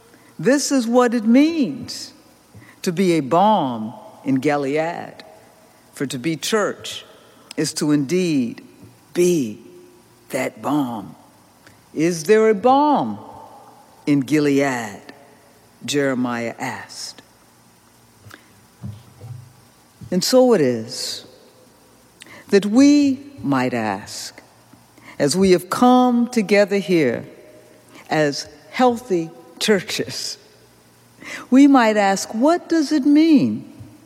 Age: 60-79